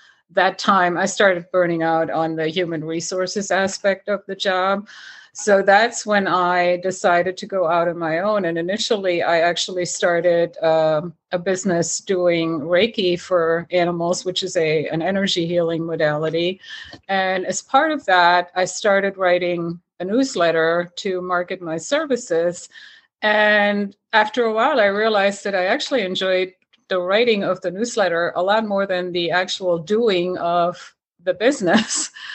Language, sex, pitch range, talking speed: English, female, 175-215 Hz, 155 wpm